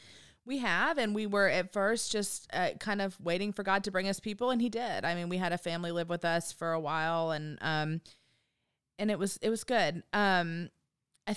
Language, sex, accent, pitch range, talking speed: English, female, American, 170-215 Hz, 225 wpm